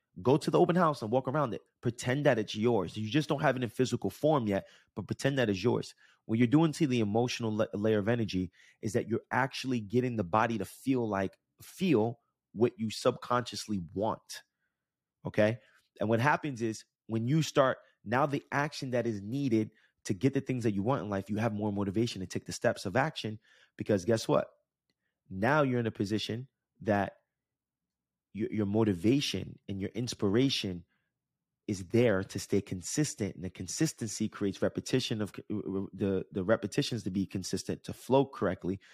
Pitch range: 100-130 Hz